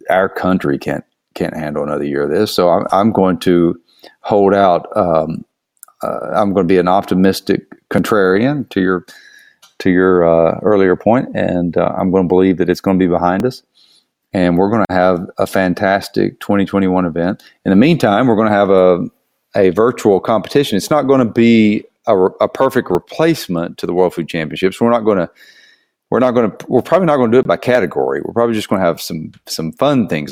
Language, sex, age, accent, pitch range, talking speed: English, male, 40-59, American, 85-100 Hz, 210 wpm